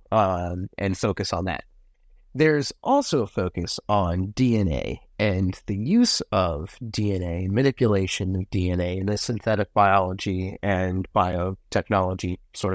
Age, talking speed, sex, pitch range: 30-49, 120 wpm, male, 90-110 Hz